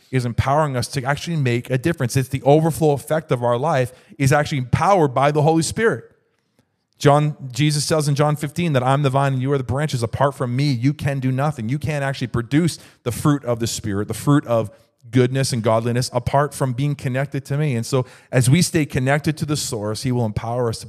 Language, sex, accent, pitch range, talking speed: English, male, American, 105-135 Hz, 225 wpm